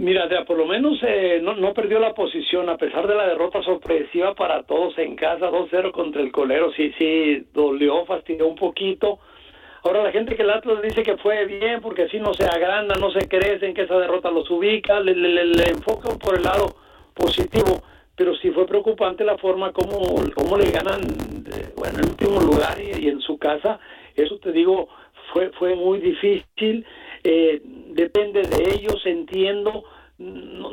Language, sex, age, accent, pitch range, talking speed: Spanish, male, 60-79, Mexican, 170-210 Hz, 190 wpm